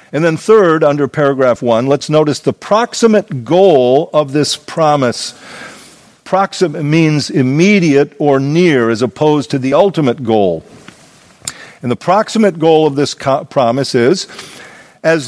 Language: English